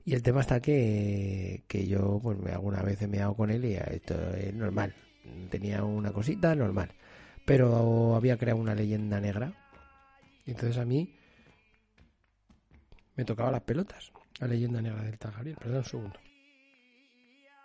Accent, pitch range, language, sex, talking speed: Spanish, 100-130 Hz, Spanish, male, 155 wpm